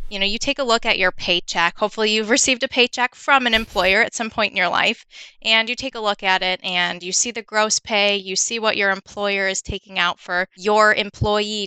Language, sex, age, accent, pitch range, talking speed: English, female, 20-39, American, 185-230 Hz, 240 wpm